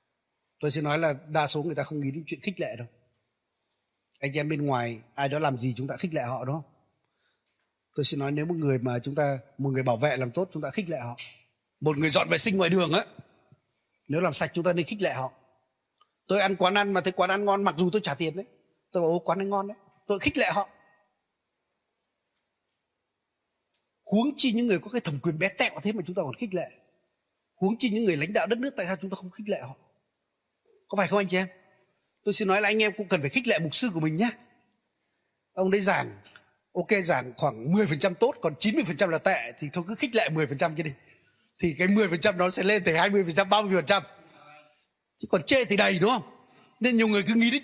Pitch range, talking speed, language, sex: 150-210 Hz, 240 wpm, Vietnamese, male